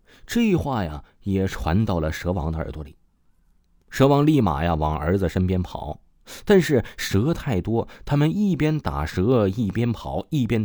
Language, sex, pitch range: Chinese, male, 85-115 Hz